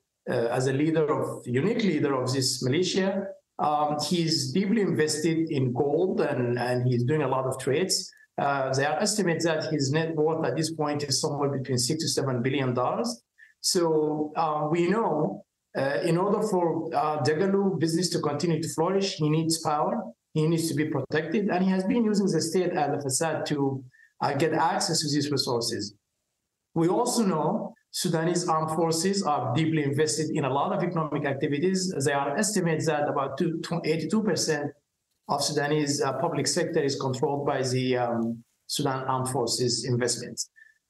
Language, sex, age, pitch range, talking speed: English, male, 50-69, 140-180 Hz, 170 wpm